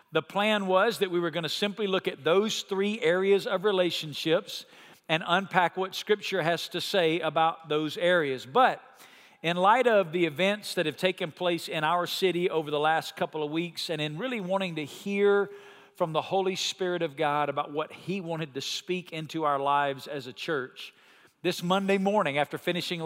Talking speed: 195 wpm